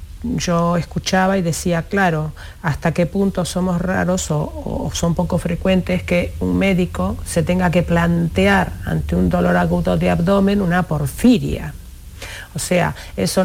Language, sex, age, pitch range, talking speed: Spanish, female, 50-69, 160-190 Hz, 145 wpm